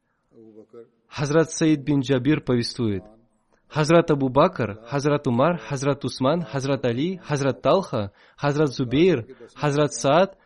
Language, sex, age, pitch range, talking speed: Russian, male, 20-39, 115-145 Hz, 110 wpm